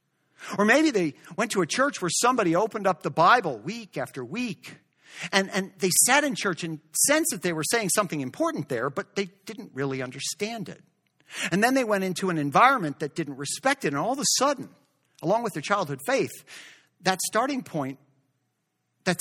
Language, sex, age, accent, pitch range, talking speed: English, male, 50-69, American, 145-210 Hz, 195 wpm